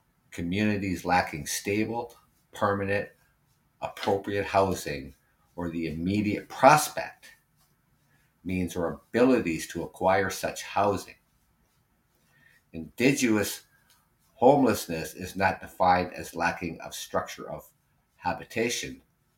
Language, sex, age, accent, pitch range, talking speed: English, male, 50-69, American, 85-105 Hz, 85 wpm